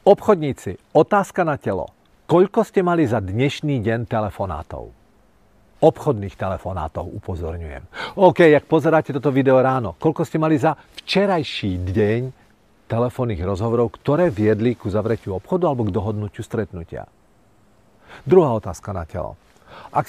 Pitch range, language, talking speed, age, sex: 105-145 Hz, Czech, 125 wpm, 40-59, male